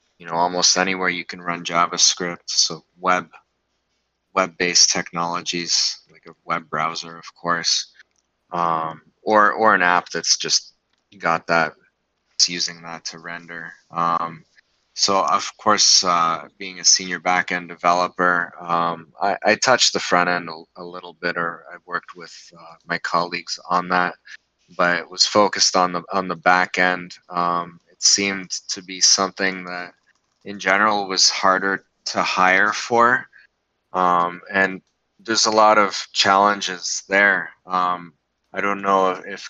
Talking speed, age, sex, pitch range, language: 150 wpm, 20-39, male, 85-95 Hz, English